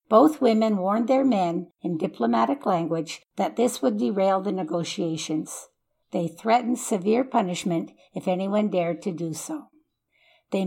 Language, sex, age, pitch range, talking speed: English, female, 60-79, 180-240 Hz, 140 wpm